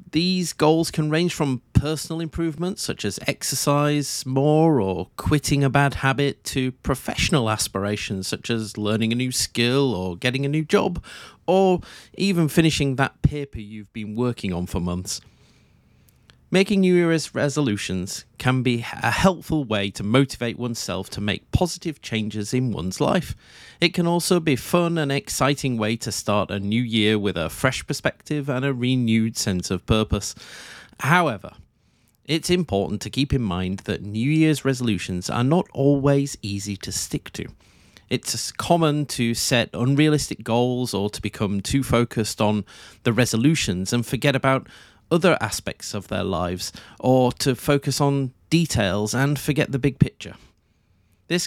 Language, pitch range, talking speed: English, 105-145 Hz, 155 wpm